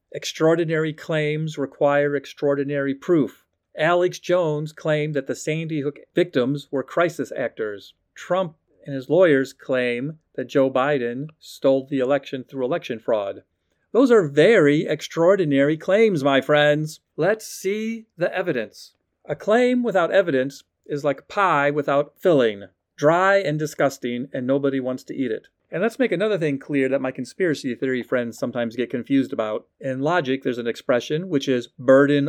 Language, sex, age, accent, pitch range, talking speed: English, male, 40-59, American, 130-170 Hz, 150 wpm